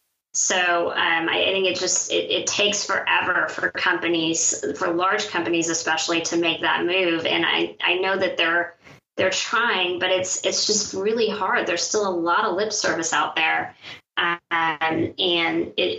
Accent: American